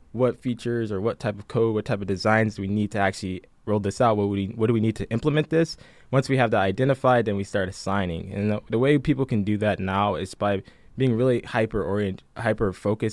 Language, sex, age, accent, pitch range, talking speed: English, male, 20-39, American, 100-125 Hz, 220 wpm